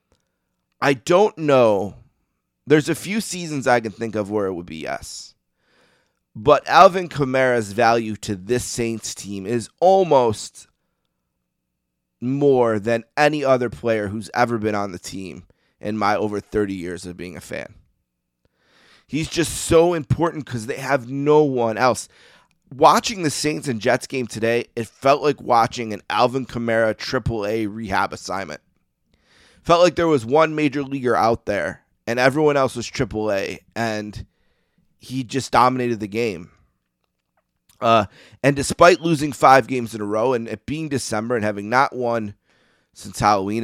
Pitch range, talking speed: 105-140 Hz, 155 wpm